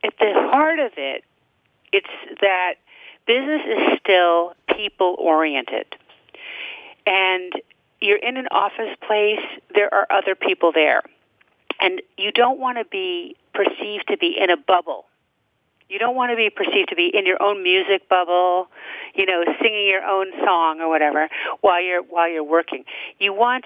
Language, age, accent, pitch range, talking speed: English, 40-59, American, 180-265 Hz, 155 wpm